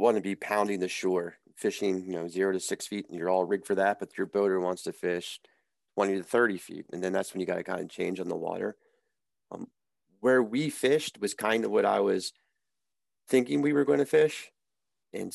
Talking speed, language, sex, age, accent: 230 wpm, English, male, 30-49, American